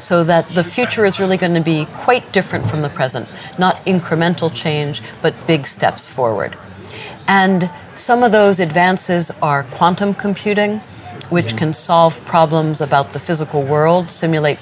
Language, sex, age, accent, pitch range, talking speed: English, female, 50-69, American, 145-175 Hz, 155 wpm